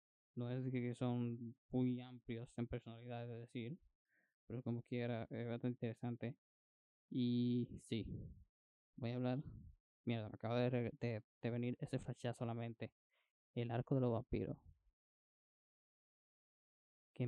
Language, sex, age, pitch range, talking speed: Spanish, male, 10-29, 115-125 Hz, 135 wpm